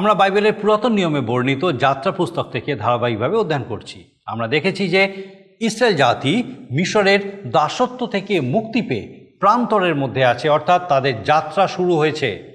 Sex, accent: male, native